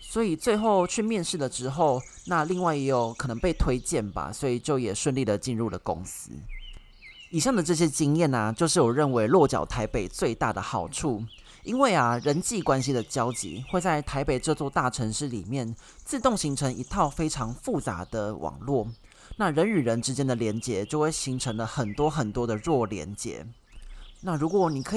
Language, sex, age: Chinese, male, 20-39